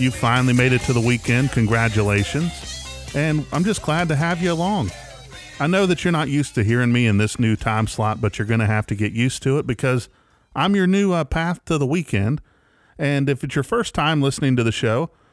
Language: English